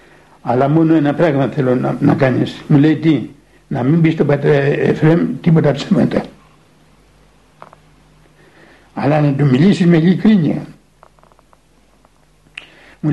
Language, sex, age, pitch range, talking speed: Greek, male, 60-79, 140-180 Hz, 120 wpm